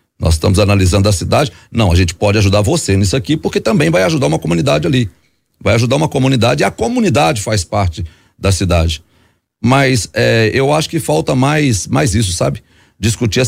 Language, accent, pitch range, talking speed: Portuguese, Brazilian, 100-160 Hz, 190 wpm